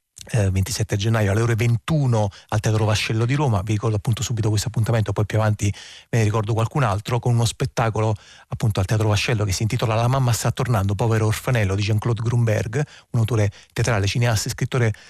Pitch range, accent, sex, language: 110-125 Hz, native, male, Italian